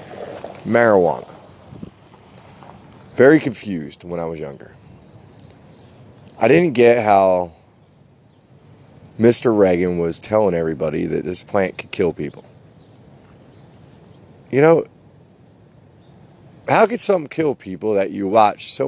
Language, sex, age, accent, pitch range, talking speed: English, male, 30-49, American, 95-120 Hz, 105 wpm